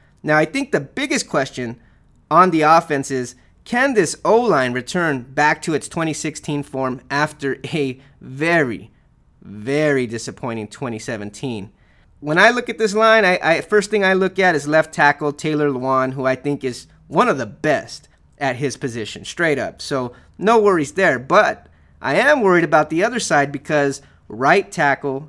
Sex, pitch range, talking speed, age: male, 125-160 Hz, 170 wpm, 30-49